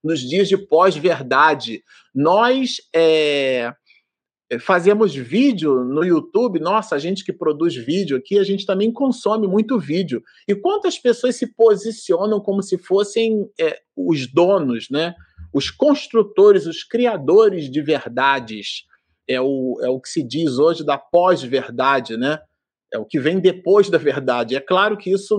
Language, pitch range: Portuguese, 150-220 Hz